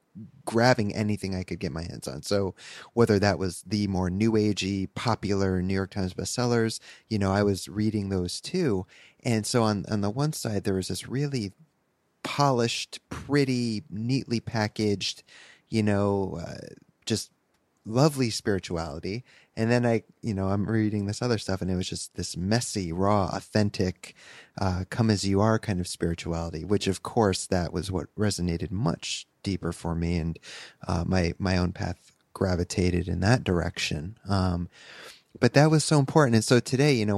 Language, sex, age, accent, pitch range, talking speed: English, male, 30-49, American, 90-115 Hz, 175 wpm